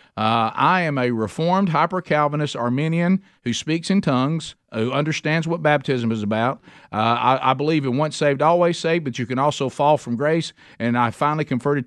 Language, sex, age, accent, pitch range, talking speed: English, male, 50-69, American, 130-180 Hz, 185 wpm